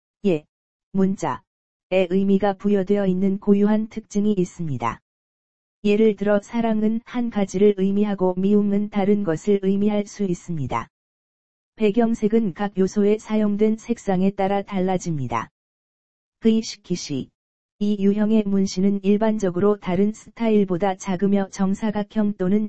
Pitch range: 185-210 Hz